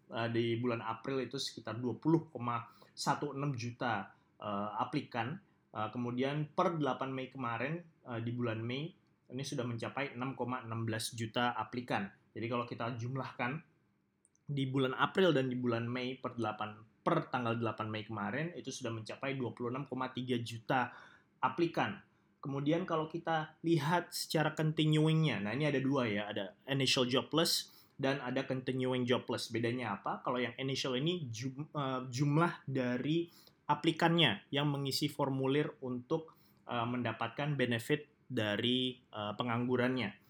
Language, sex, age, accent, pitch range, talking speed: Indonesian, male, 20-39, native, 120-145 Hz, 120 wpm